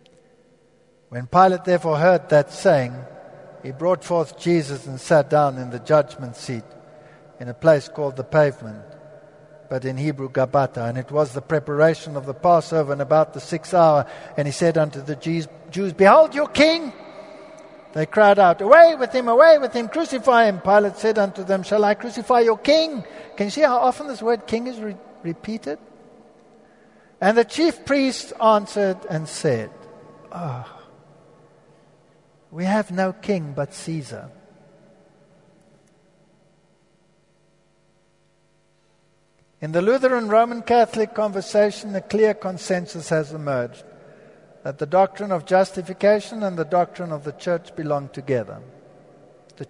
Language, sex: Danish, male